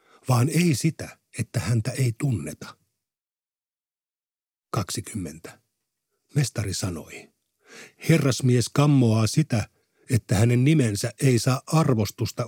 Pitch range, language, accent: 110-140 Hz, Finnish, native